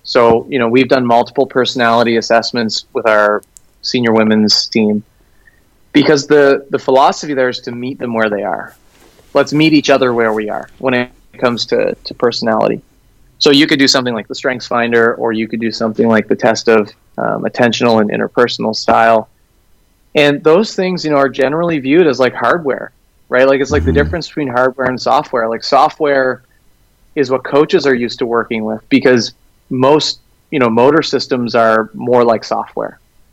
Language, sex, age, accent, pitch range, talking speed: English, male, 30-49, American, 110-130 Hz, 185 wpm